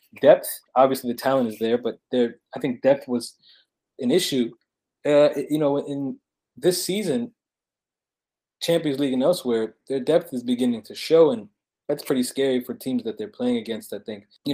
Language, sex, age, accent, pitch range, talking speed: English, male, 20-39, American, 120-170 Hz, 180 wpm